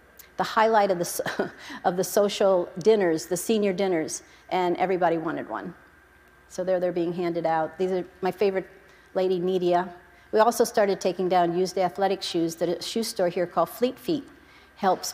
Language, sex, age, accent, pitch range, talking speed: English, female, 50-69, American, 180-205 Hz, 175 wpm